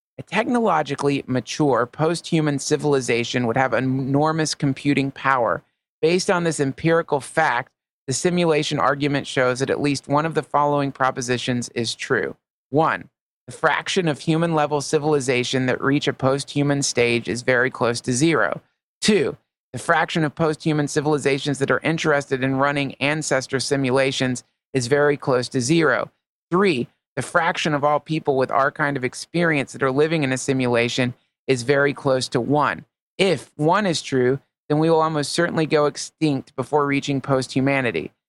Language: English